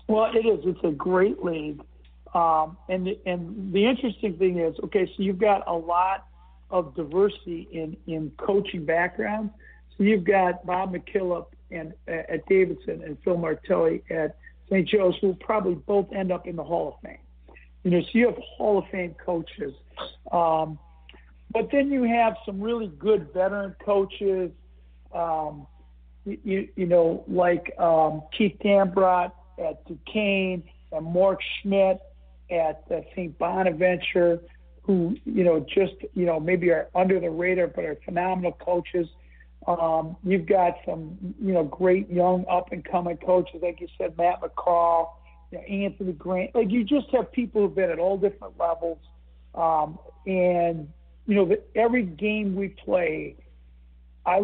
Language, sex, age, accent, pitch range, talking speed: English, male, 60-79, American, 160-195 Hz, 160 wpm